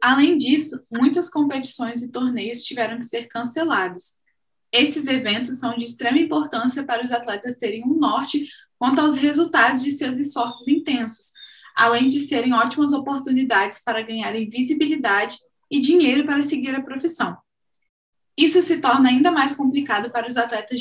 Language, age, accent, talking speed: Portuguese, 10-29, Brazilian, 150 wpm